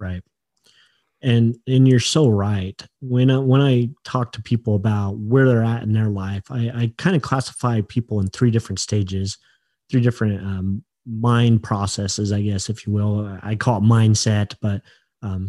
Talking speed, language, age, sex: 170 wpm, English, 30-49, male